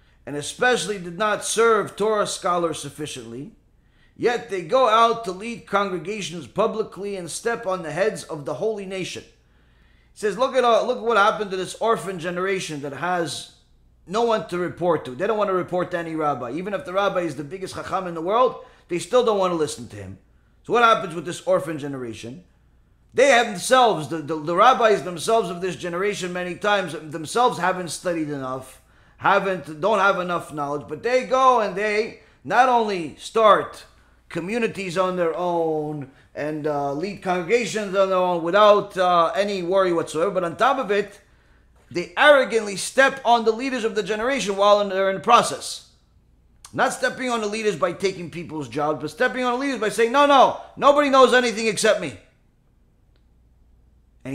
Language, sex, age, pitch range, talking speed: English, male, 30-49, 160-220 Hz, 185 wpm